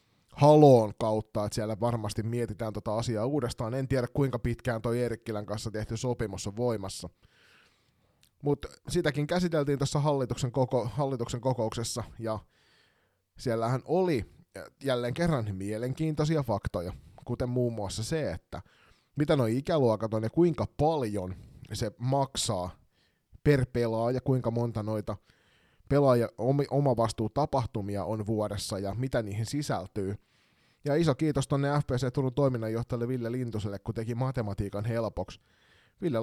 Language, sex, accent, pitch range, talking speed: Finnish, male, native, 105-135 Hz, 130 wpm